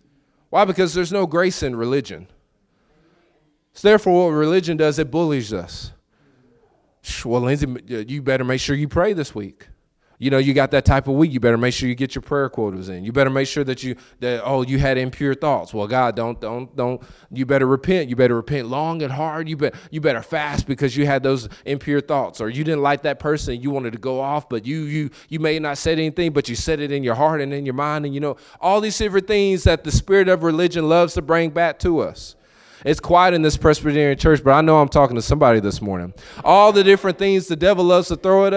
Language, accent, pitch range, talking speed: English, American, 125-160 Hz, 240 wpm